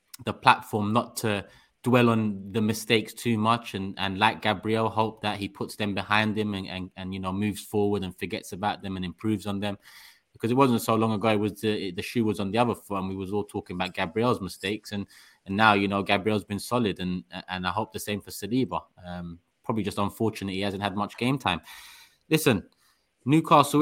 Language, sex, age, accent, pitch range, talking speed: English, male, 20-39, British, 100-115 Hz, 225 wpm